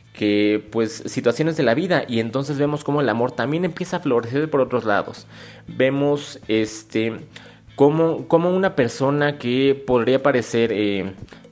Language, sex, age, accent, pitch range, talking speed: Spanish, male, 30-49, Mexican, 115-145 Hz, 150 wpm